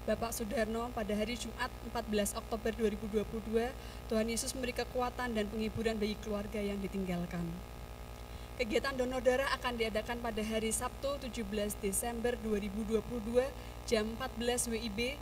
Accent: native